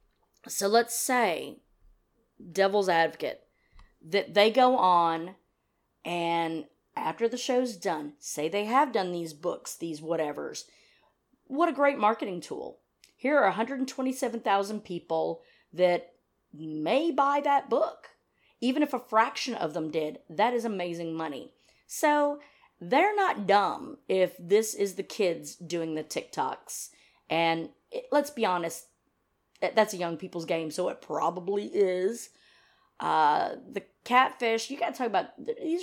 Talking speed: 135 wpm